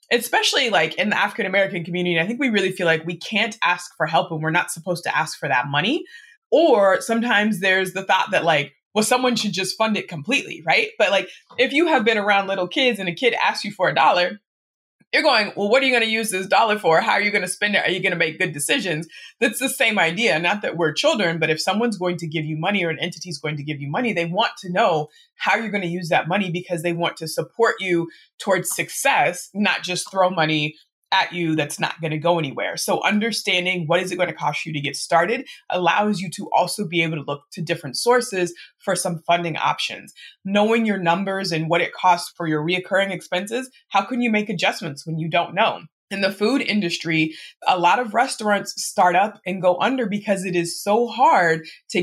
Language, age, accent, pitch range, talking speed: English, 20-39, American, 170-215 Hz, 240 wpm